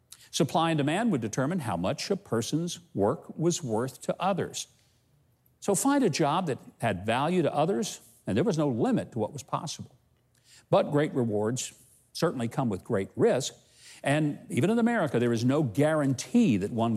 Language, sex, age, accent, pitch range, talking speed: English, male, 60-79, American, 120-180 Hz, 175 wpm